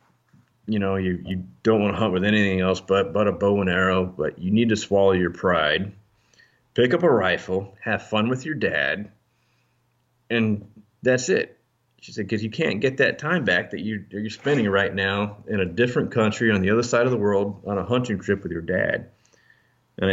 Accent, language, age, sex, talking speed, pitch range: American, English, 30-49, male, 210 wpm, 95-115 Hz